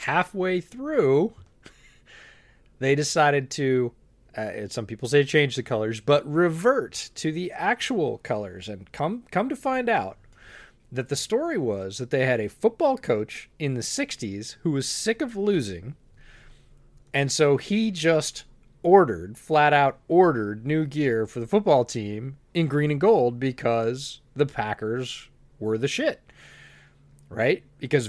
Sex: male